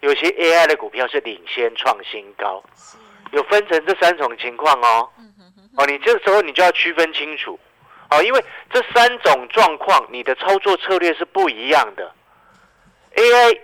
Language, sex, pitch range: Chinese, male, 165-250 Hz